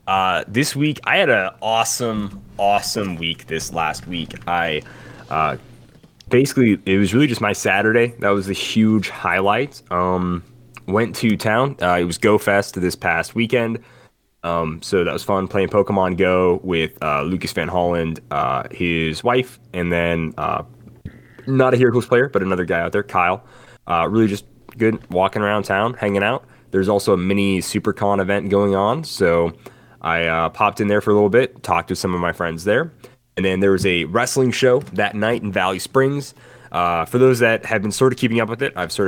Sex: male